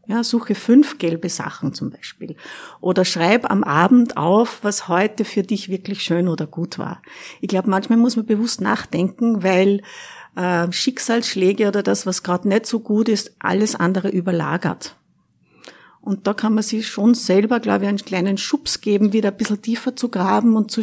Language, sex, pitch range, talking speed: German, female, 185-230 Hz, 180 wpm